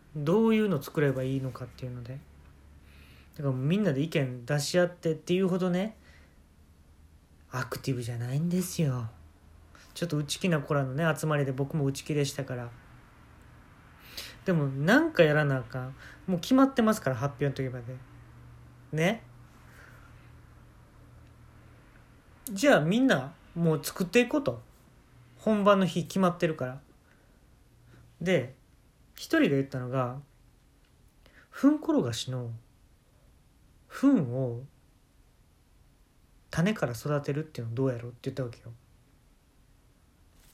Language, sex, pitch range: Japanese, male, 120-175 Hz